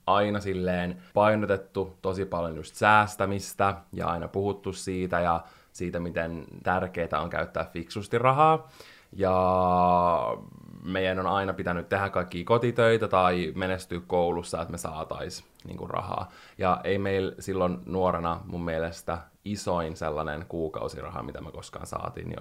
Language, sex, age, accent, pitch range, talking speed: Finnish, male, 20-39, native, 90-110 Hz, 130 wpm